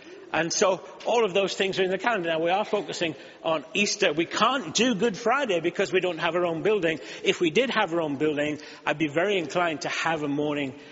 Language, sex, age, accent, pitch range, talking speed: English, male, 50-69, British, 145-210 Hz, 235 wpm